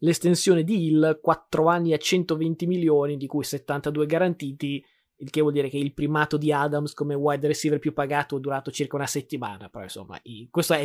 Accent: native